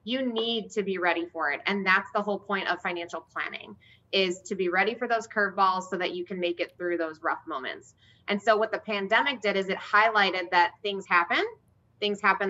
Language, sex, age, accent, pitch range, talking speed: English, female, 20-39, American, 175-210 Hz, 220 wpm